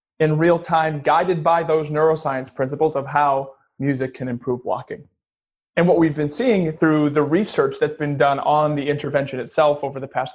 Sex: male